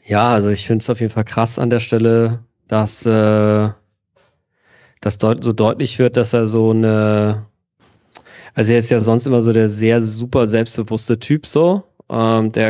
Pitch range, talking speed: 105-120 Hz, 180 wpm